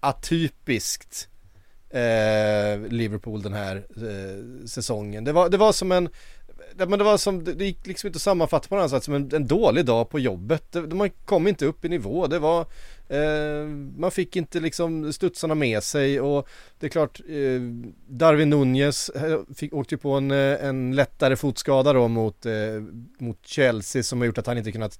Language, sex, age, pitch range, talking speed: Swedish, male, 30-49, 115-150 Hz, 180 wpm